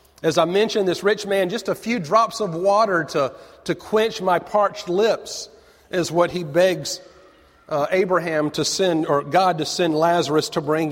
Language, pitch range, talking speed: English, 145-195 Hz, 180 wpm